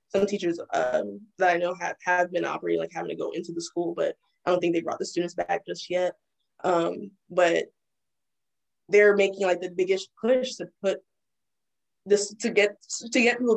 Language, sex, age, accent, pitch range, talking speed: English, female, 20-39, American, 175-205 Hz, 190 wpm